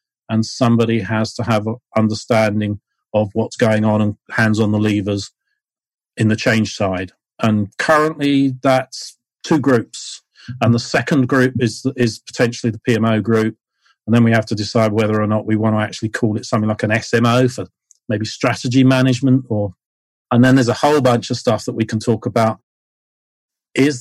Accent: British